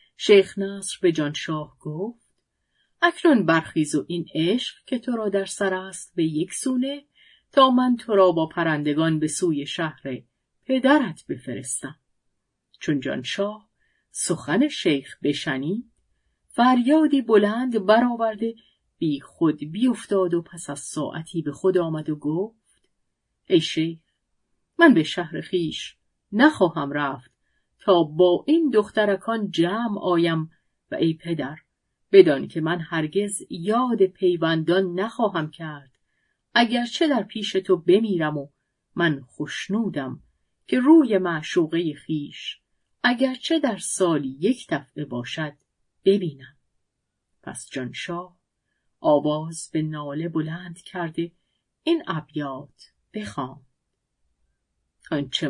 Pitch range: 155-215 Hz